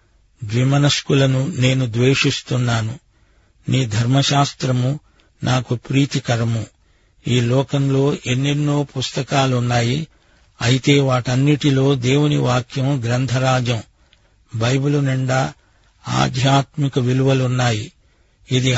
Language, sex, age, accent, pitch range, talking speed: Telugu, male, 50-69, native, 120-135 Hz, 65 wpm